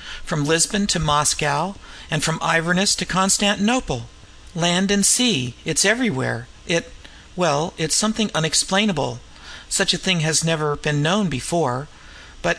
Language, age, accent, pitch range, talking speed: English, 50-69, American, 135-195 Hz, 135 wpm